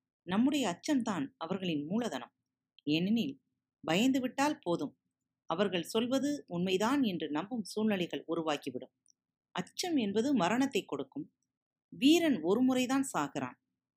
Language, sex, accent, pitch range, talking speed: Tamil, female, native, 160-245 Hz, 95 wpm